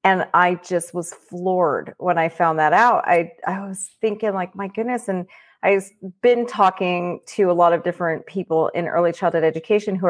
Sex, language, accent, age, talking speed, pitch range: female, English, American, 30-49, 190 wpm, 180-230 Hz